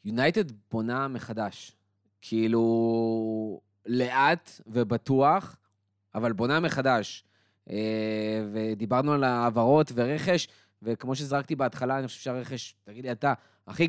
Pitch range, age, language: 110-150 Hz, 20-39, Hebrew